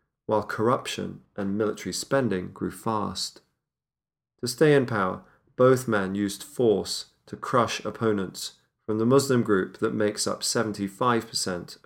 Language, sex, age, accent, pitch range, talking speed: English, male, 40-59, British, 100-120 Hz, 130 wpm